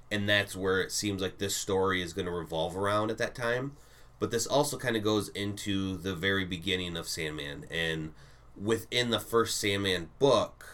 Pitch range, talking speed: 90-105 Hz, 190 wpm